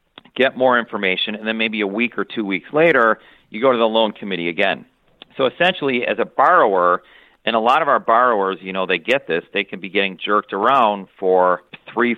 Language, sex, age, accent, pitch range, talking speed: English, male, 40-59, American, 95-120 Hz, 210 wpm